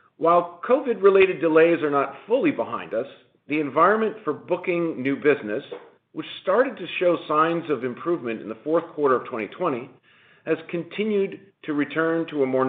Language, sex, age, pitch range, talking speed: English, male, 50-69, 130-170 Hz, 160 wpm